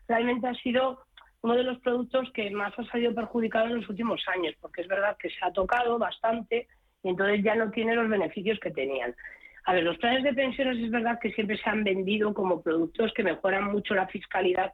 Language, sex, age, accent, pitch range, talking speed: Spanish, female, 30-49, Spanish, 180-230 Hz, 215 wpm